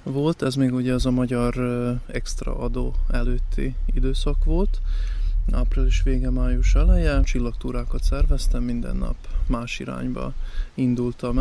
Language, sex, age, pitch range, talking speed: Hungarian, male, 20-39, 85-130 Hz, 120 wpm